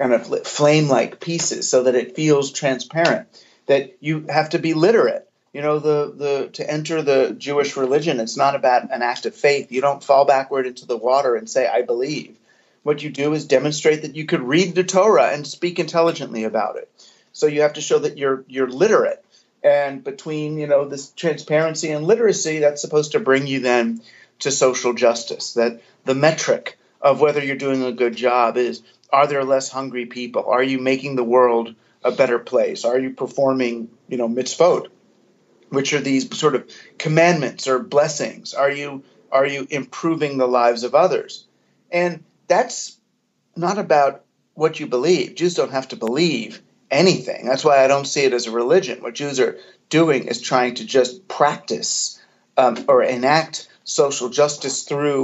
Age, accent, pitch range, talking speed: 40-59, American, 130-155 Hz, 180 wpm